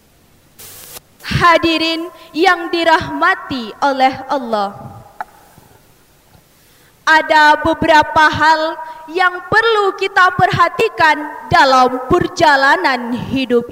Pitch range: 300-375 Hz